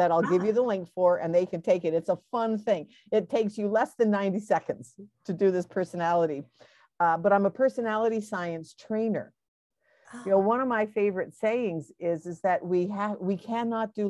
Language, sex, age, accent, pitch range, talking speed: English, female, 50-69, American, 170-215 Hz, 210 wpm